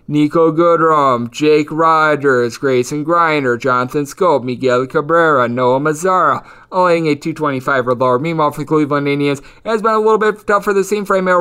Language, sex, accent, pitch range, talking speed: English, male, American, 150-185 Hz, 175 wpm